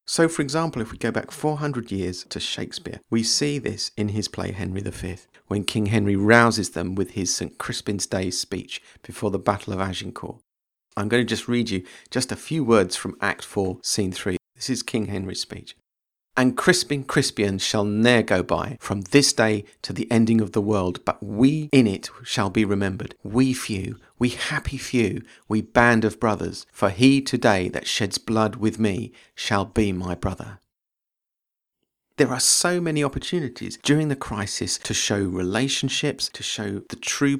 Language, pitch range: English, 100-130 Hz